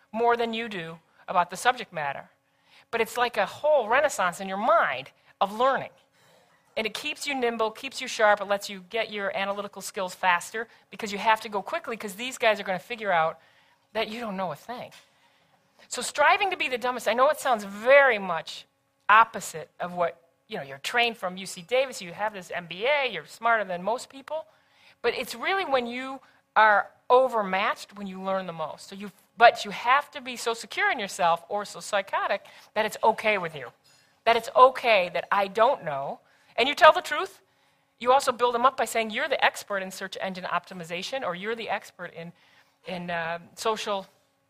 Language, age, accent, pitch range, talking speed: English, 40-59, American, 185-245 Hz, 200 wpm